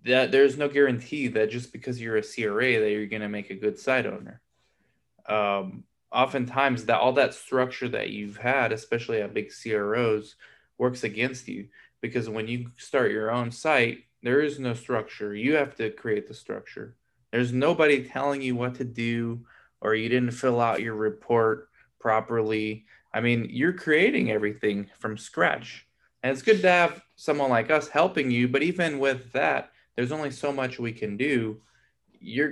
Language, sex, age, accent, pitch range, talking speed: English, male, 20-39, American, 110-140 Hz, 175 wpm